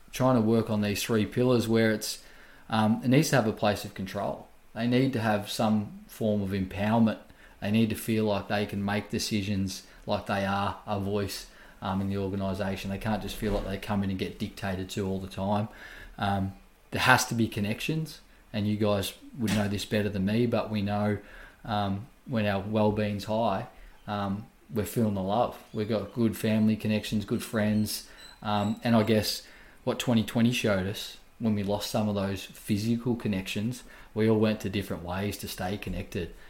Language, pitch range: English, 100-115 Hz